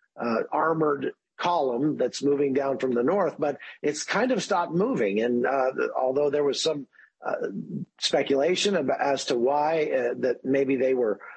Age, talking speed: 50-69, 165 wpm